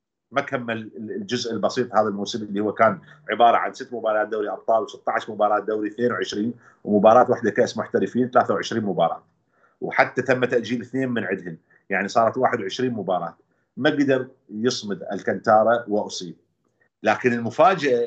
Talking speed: 140 wpm